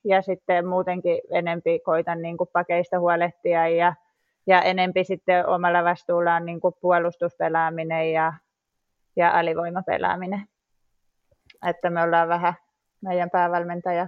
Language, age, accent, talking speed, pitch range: Finnish, 20-39, native, 105 wpm, 165-180 Hz